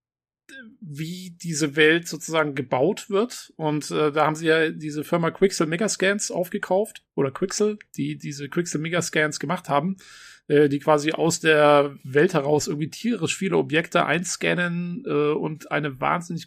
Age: 40-59